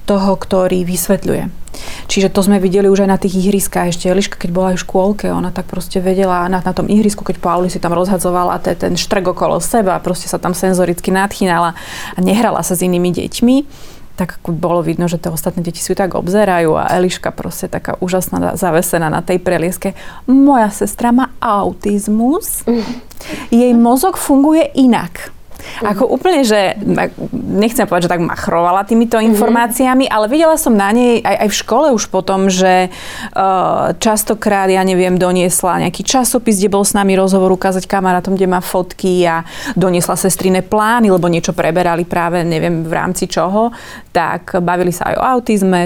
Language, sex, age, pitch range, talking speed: Slovak, female, 30-49, 180-215 Hz, 170 wpm